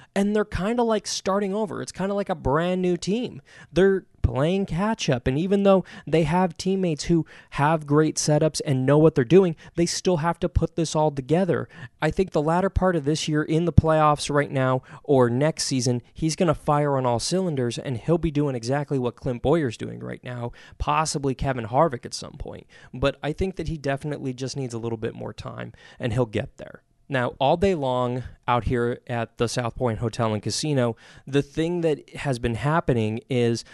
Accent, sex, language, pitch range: American, male, English, 125-160 Hz